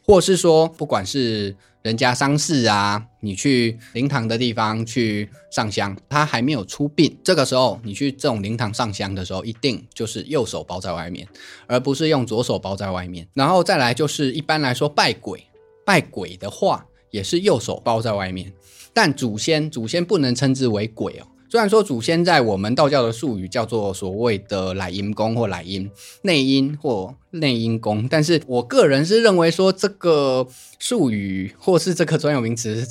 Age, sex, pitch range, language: 20-39, male, 105-145 Hz, Chinese